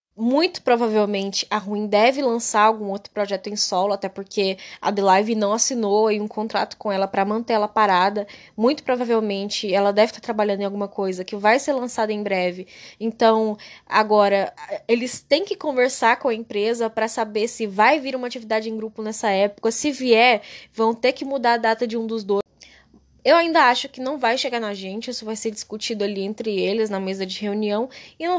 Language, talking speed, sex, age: Portuguese, 200 wpm, female, 10-29